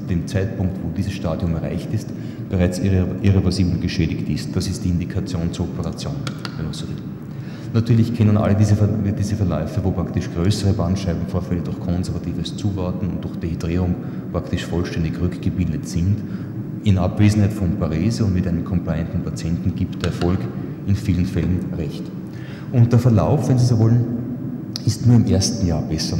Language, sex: German, male